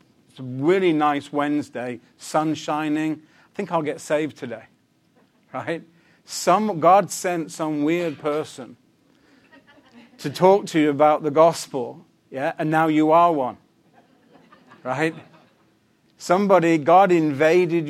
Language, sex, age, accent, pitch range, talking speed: English, male, 50-69, British, 135-170 Hz, 125 wpm